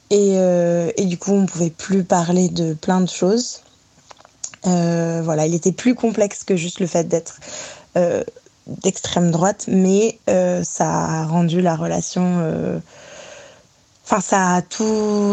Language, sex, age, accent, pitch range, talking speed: French, female, 20-39, French, 170-200 Hz, 155 wpm